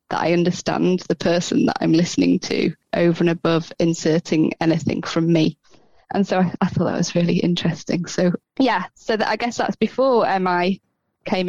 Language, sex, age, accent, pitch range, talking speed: English, female, 20-39, British, 175-220 Hz, 190 wpm